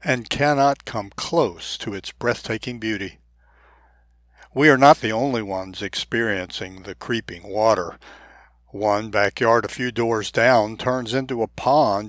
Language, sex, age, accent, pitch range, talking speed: English, male, 60-79, American, 105-135 Hz, 140 wpm